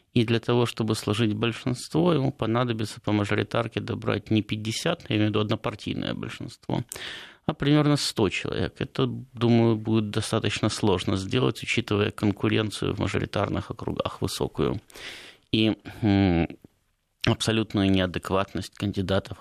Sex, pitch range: male, 105-120 Hz